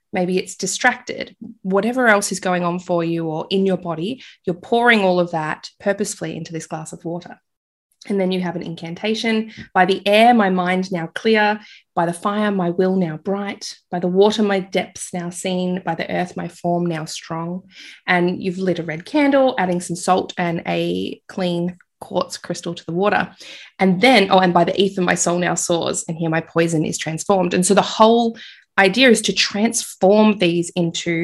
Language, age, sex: English, 20-39, female